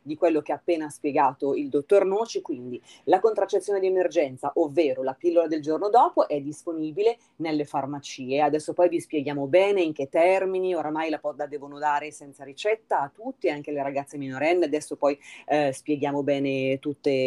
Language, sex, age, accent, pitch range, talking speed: Italian, female, 30-49, native, 145-195 Hz, 180 wpm